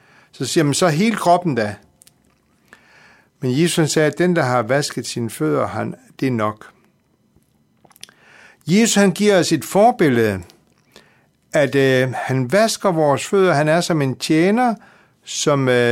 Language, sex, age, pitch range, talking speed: Danish, male, 60-79, 125-180 Hz, 140 wpm